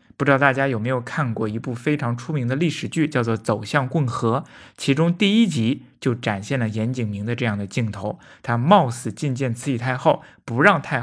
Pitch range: 115-155 Hz